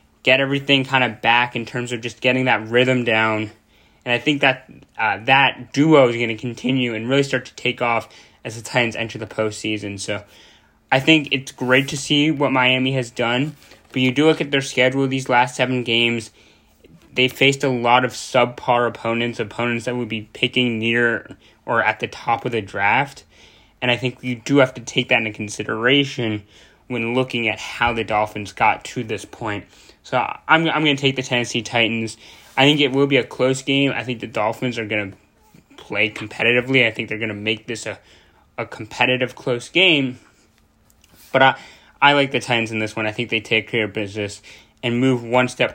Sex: male